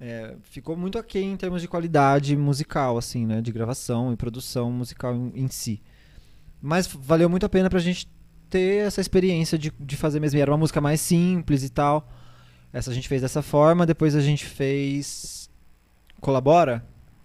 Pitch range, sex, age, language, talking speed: 125-160 Hz, male, 20-39, Portuguese, 180 wpm